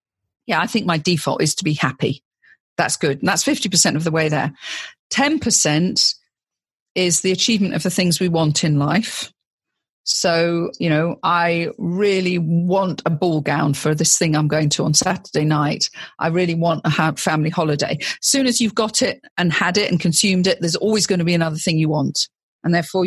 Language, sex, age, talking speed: English, female, 40-59, 200 wpm